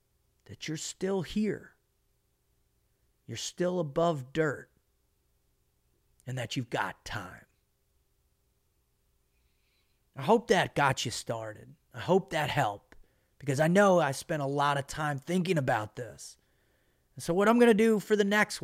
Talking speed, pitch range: 140 wpm, 130-180 Hz